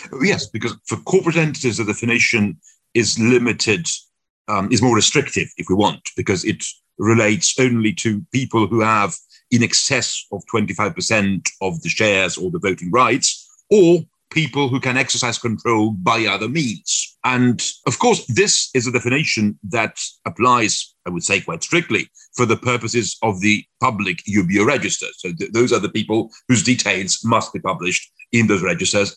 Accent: British